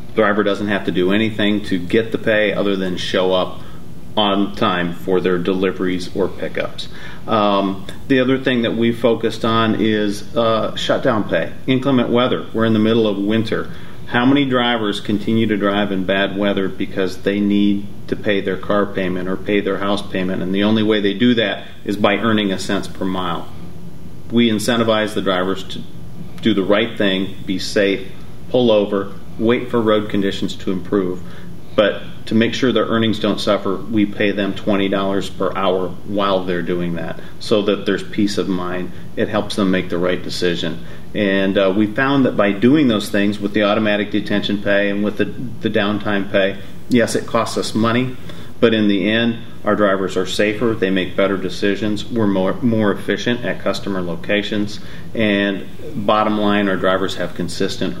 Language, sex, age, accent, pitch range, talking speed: English, male, 40-59, American, 95-110 Hz, 185 wpm